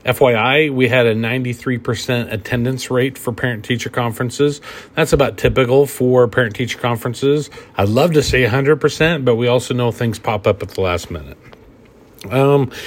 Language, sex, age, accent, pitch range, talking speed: English, male, 40-59, American, 110-145 Hz, 155 wpm